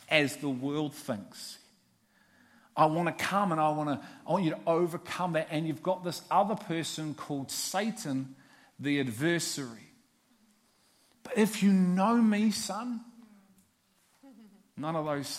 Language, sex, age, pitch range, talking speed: English, male, 40-59, 140-195 Hz, 145 wpm